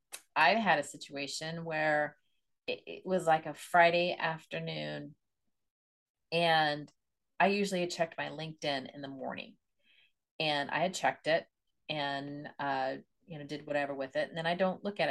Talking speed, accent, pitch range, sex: 160 wpm, American, 150-185 Hz, female